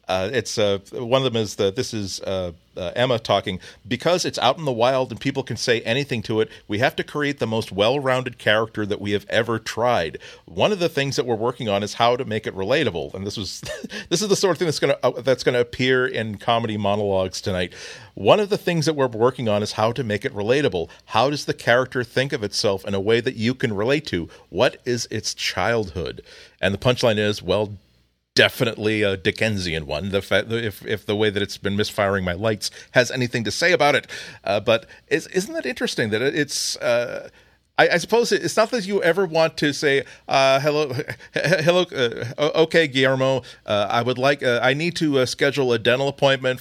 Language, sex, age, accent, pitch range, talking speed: English, male, 40-59, American, 105-150 Hz, 230 wpm